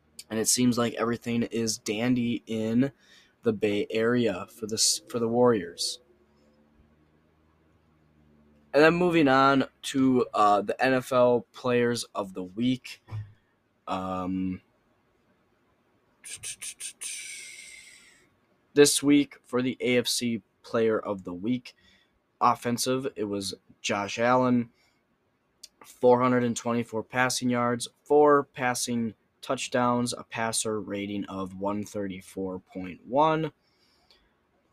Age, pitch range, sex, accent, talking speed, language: 10-29, 105-125 Hz, male, American, 95 wpm, English